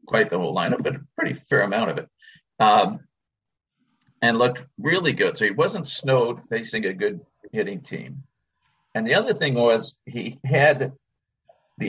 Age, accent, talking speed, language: 50-69, American, 165 wpm, English